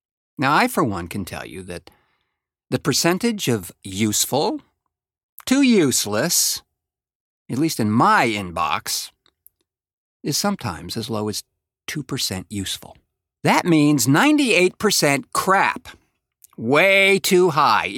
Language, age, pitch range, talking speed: English, 50-69, 105-160 Hz, 110 wpm